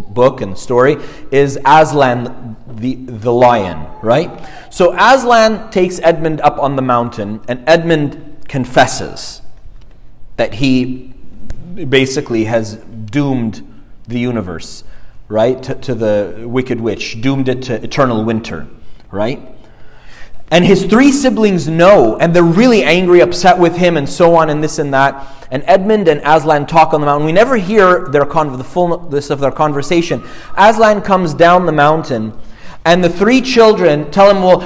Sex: male